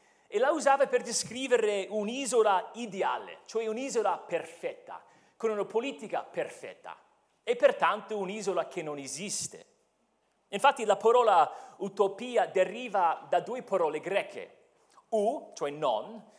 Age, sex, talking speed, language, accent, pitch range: 40-59, male, 115 wpm, Italian, native, 195-280 Hz